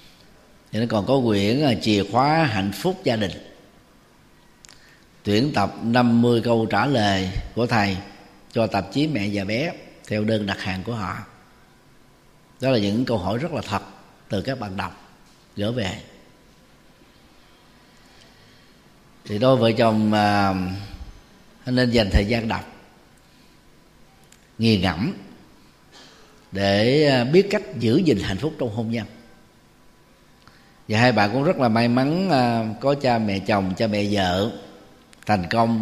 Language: Vietnamese